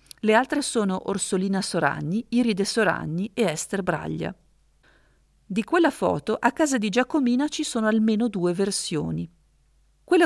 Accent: native